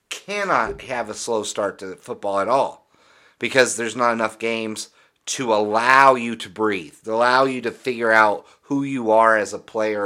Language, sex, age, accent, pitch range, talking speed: English, male, 30-49, American, 110-135 Hz, 185 wpm